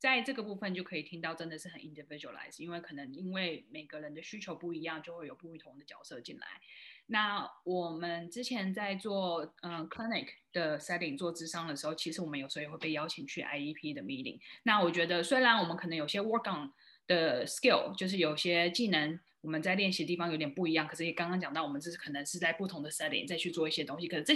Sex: female